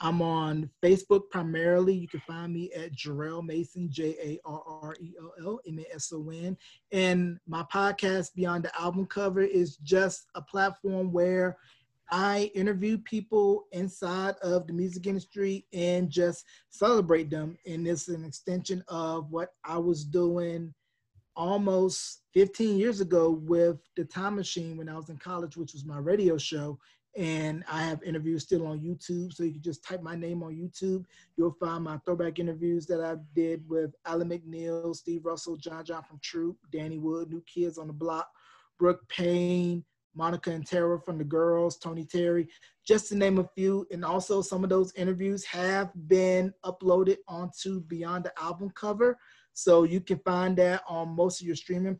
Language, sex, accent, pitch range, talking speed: English, male, American, 165-185 Hz, 165 wpm